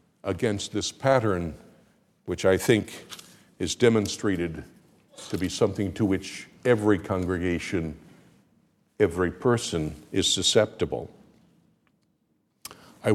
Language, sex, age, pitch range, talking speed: English, male, 60-79, 100-125 Hz, 90 wpm